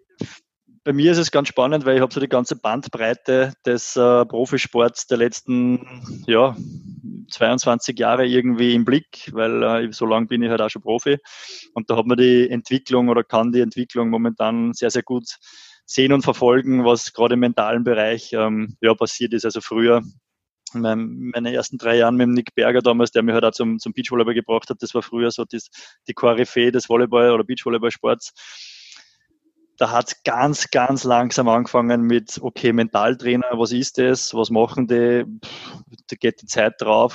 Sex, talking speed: male, 180 wpm